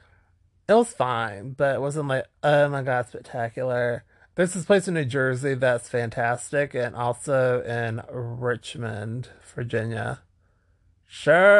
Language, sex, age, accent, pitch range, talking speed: English, male, 30-49, American, 120-160 Hz, 130 wpm